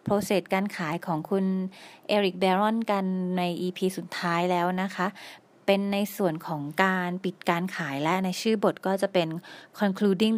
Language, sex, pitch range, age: Thai, female, 175-215 Hz, 20-39